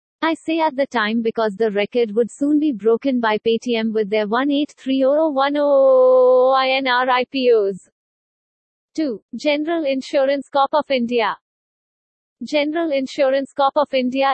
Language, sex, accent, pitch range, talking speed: English, female, Indian, 230-275 Hz, 125 wpm